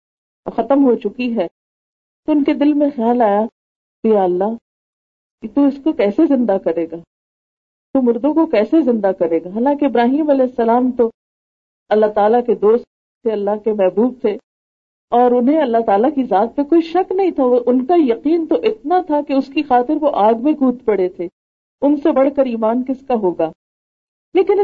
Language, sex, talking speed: Urdu, female, 190 wpm